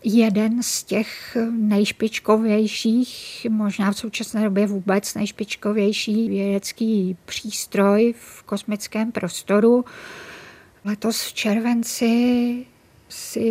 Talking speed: 85 wpm